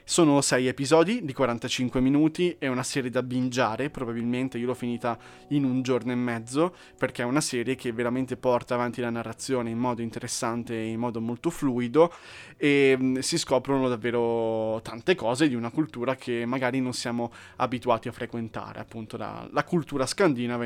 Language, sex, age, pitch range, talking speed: Italian, male, 20-39, 120-145 Hz, 170 wpm